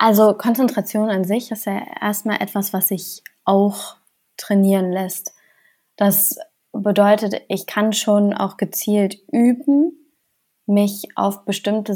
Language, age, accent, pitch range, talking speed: German, 20-39, German, 190-205 Hz, 120 wpm